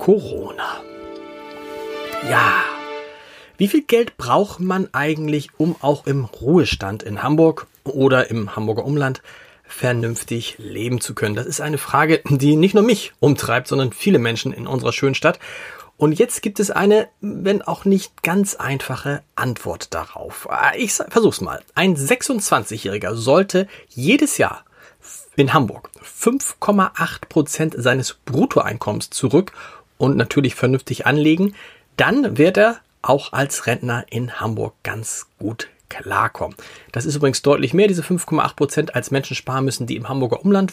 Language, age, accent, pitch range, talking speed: German, 30-49, German, 130-190 Hz, 140 wpm